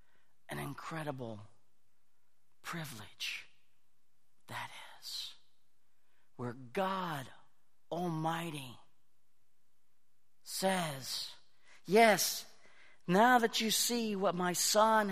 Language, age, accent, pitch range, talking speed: English, 50-69, American, 115-175 Hz, 70 wpm